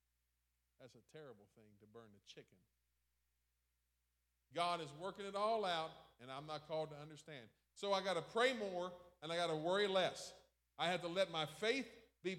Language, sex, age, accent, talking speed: English, male, 40-59, American, 180 wpm